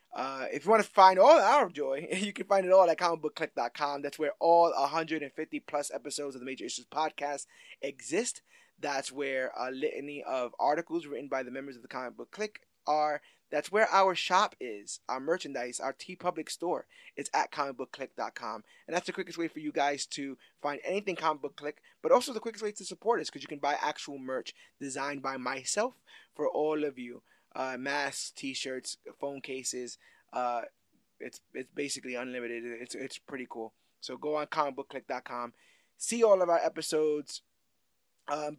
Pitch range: 135-175 Hz